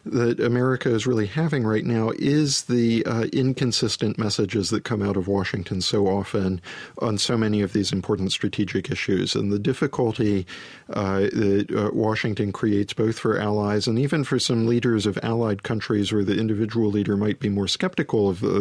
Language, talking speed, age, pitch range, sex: English, 180 wpm, 50-69, 100-115 Hz, male